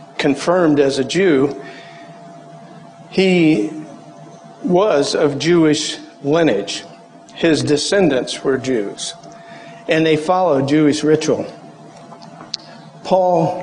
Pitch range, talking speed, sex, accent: 145-175 Hz, 85 wpm, male, American